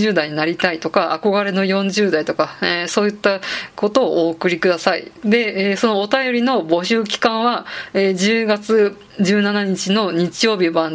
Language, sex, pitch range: Japanese, female, 175-215 Hz